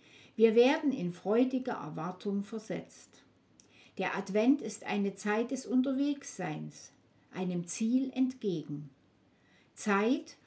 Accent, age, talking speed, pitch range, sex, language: German, 60-79, 95 wpm, 185-255 Hz, female, German